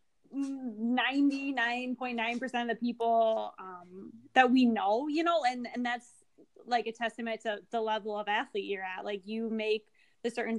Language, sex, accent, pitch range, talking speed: English, female, American, 215-245 Hz, 155 wpm